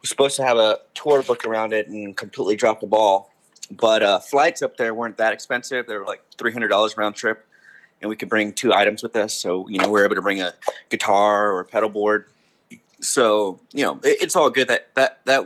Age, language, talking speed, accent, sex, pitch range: 20-39, English, 225 wpm, American, male, 105-125 Hz